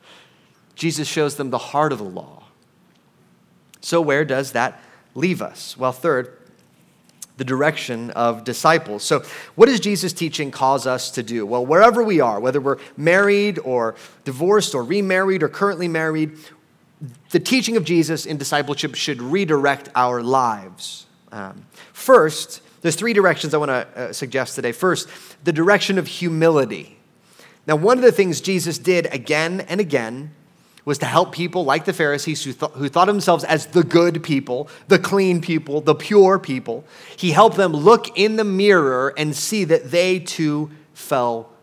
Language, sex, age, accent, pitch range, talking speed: English, male, 30-49, American, 150-205 Hz, 165 wpm